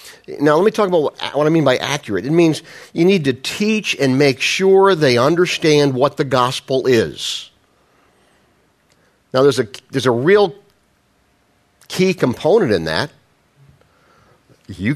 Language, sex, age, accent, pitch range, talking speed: English, male, 50-69, American, 110-155 Hz, 145 wpm